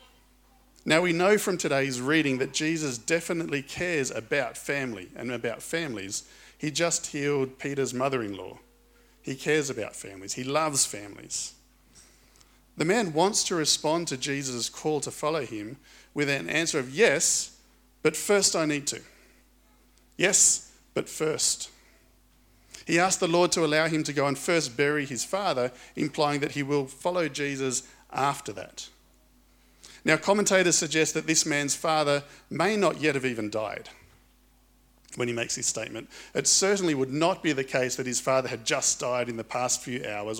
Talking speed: 160 wpm